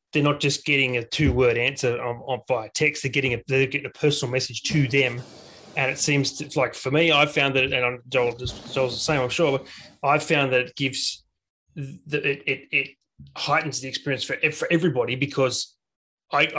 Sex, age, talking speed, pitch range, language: male, 30-49, 210 wpm, 125-145 Hz, English